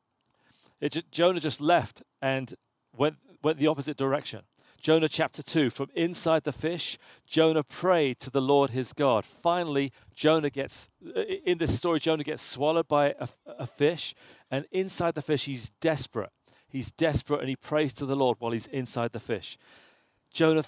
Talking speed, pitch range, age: 170 wpm, 125-155 Hz, 40-59